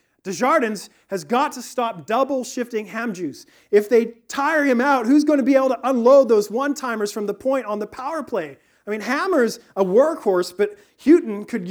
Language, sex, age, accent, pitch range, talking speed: English, male, 40-59, American, 210-280 Hz, 190 wpm